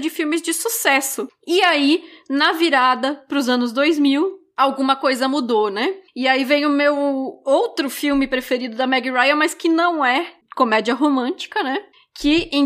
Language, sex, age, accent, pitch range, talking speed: Portuguese, female, 20-39, Brazilian, 255-320 Hz, 170 wpm